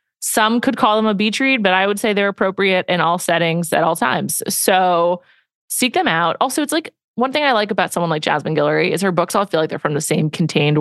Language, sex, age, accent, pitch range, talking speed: English, female, 20-39, American, 165-230 Hz, 255 wpm